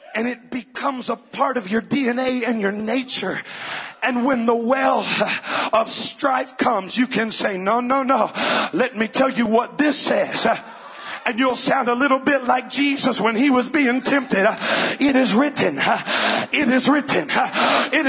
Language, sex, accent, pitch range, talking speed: English, male, American, 195-275 Hz, 170 wpm